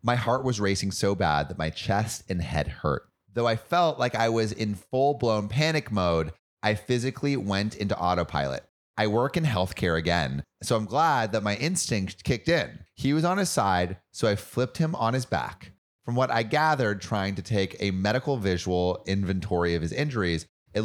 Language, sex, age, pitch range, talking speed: English, male, 30-49, 95-135 Hz, 195 wpm